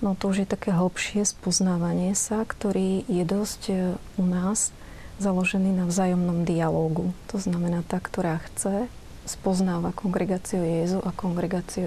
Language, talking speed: Slovak, 135 wpm